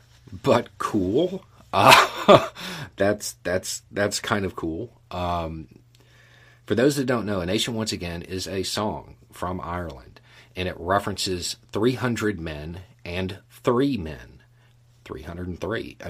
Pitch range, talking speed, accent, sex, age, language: 90-120 Hz, 125 wpm, American, male, 40-59, English